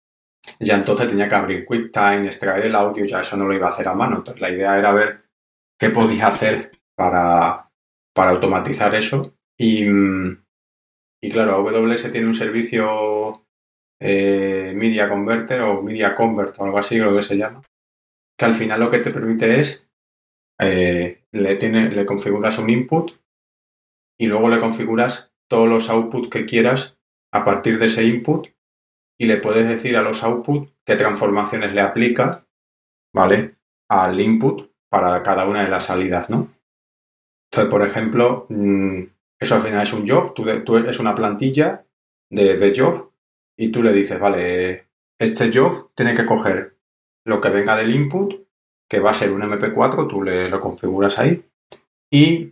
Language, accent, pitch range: Spanish, Spanish, 100-115 Hz